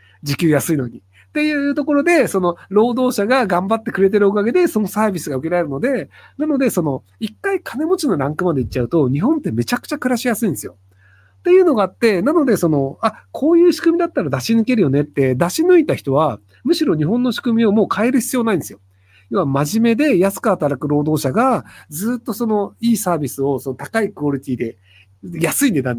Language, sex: Japanese, male